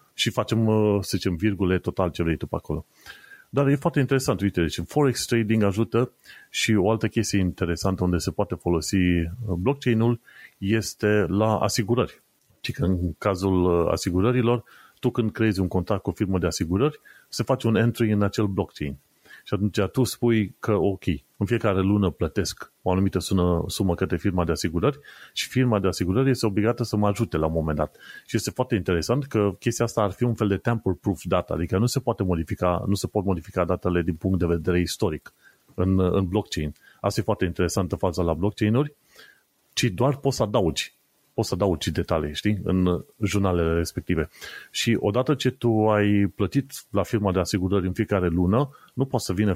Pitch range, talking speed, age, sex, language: 90-115 Hz, 185 wpm, 30-49, male, Romanian